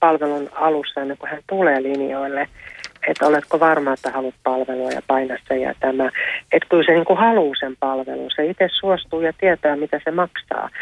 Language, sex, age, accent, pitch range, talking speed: Finnish, female, 30-49, native, 140-175 Hz, 185 wpm